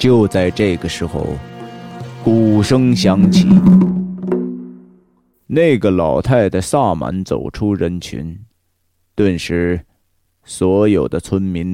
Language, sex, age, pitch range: Chinese, male, 20-39, 90-145 Hz